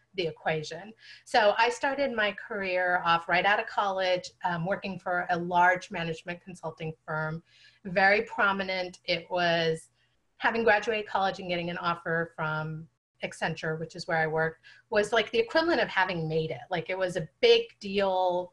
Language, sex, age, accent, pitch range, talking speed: English, female, 30-49, American, 165-220 Hz, 170 wpm